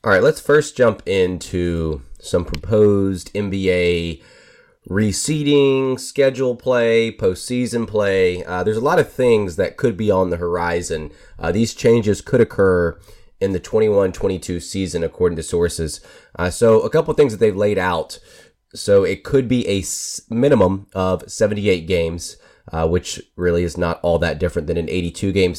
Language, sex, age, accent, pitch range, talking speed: English, male, 30-49, American, 90-105 Hz, 155 wpm